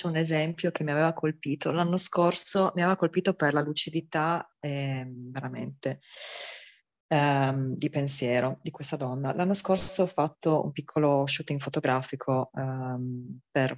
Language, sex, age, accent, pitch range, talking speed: Italian, female, 20-39, native, 135-170 Hz, 140 wpm